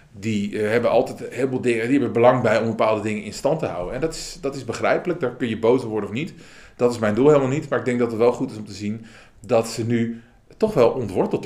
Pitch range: 100-130 Hz